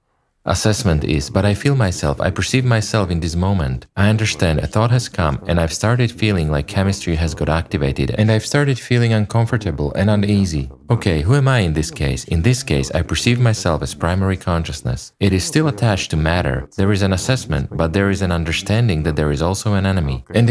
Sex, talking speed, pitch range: male, 210 wpm, 80-110 Hz